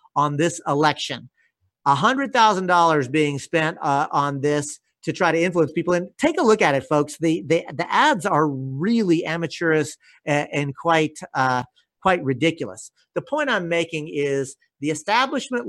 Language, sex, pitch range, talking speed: English, male, 145-200 Hz, 170 wpm